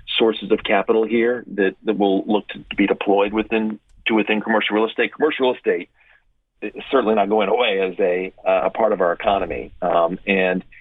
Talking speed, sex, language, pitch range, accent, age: 195 wpm, male, English, 95-110 Hz, American, 40-59